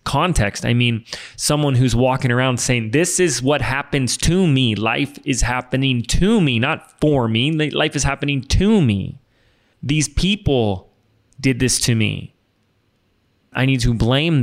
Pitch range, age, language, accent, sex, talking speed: 110-140 Hz, 20-39, English, American, male, 155 wpm